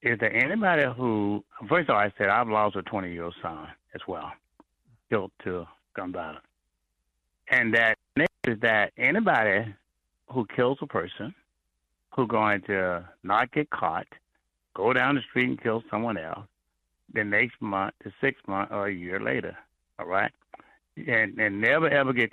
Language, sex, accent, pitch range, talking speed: English, male, American, 95-120 Hz, 160 wpm